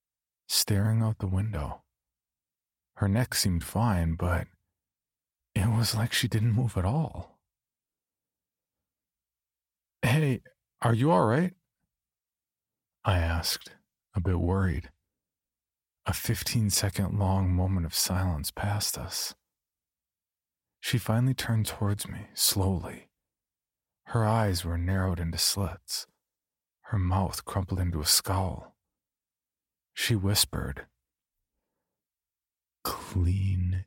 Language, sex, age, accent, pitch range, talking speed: English, male, 40-59, American, 85-110 Hz, 100 wpm